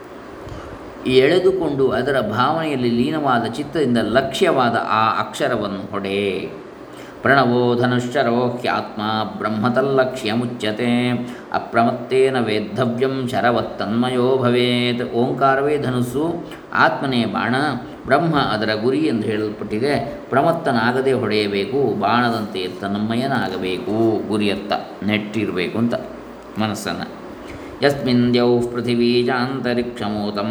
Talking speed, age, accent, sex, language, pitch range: 70 wpm, 20-39, native, male, Kannada, 110-130 Hz